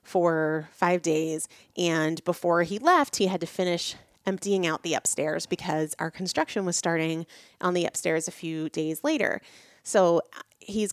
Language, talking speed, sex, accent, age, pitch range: English, 160 wpm, female, American, 30-49, 160-195 Hz